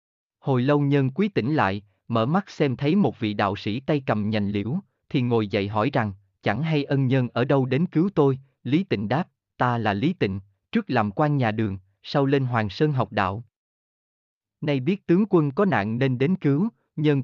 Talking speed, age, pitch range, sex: 210 wpm, 20-39, 110-155 Hz, male